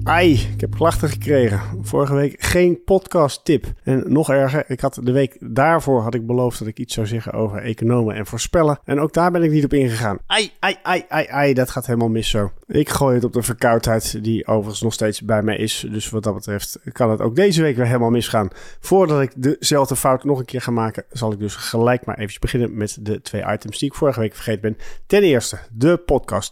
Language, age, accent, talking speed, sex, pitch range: Dutch, 40-59, Dutch, 235 wpm, male, 110-140 Hz